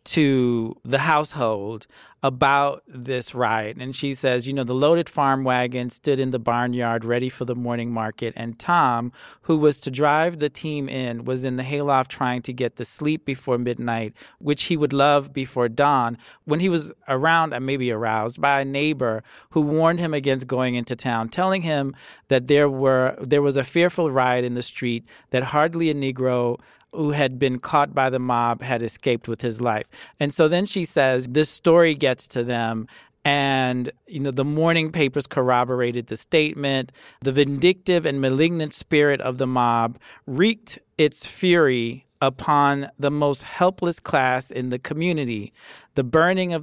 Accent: American